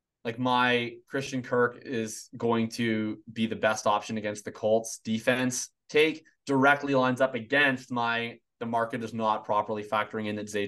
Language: English